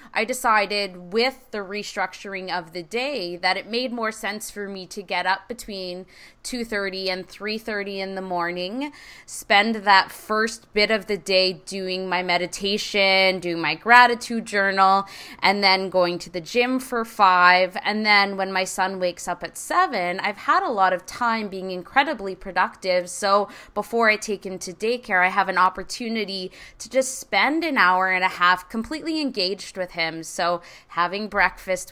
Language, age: English, 20-39